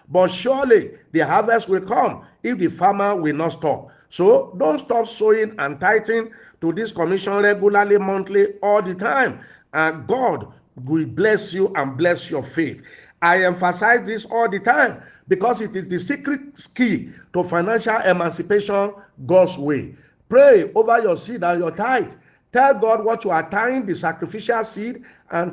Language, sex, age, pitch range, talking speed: English, male, 50-69, 175-230 Hz, 160 wpm